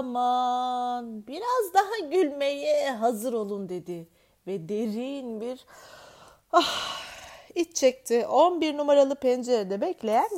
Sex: female